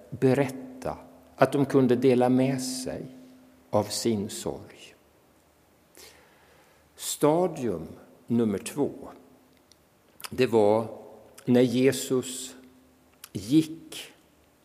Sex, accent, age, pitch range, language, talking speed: male, Norwegian, 60-79, 95-130 Hz, Swedish, 75 wpm